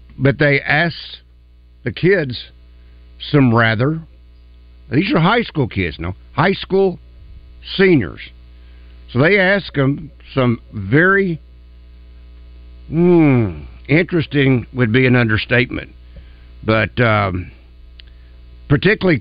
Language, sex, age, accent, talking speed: English, male, 60-79, American, 95 wpm